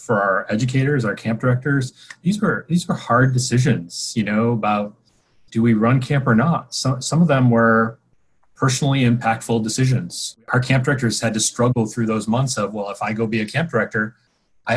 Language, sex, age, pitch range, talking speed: English, male, 30-49, 110-130 Hz, 195 wpm